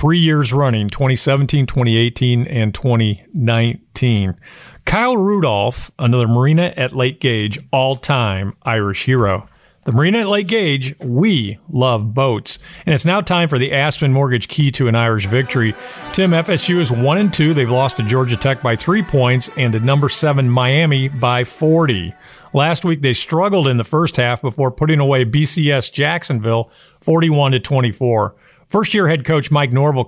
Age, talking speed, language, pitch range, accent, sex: 50-69, 160 wpm, English, 125-165 Hz, American, male